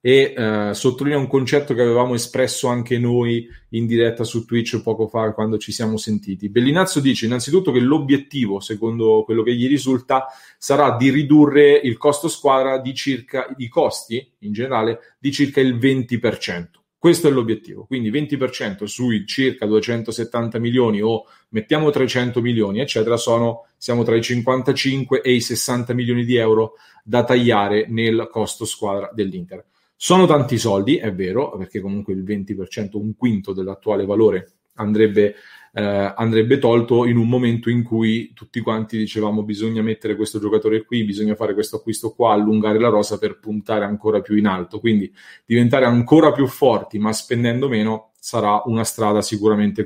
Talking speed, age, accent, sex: 160 wpm, 30-49, Italian, male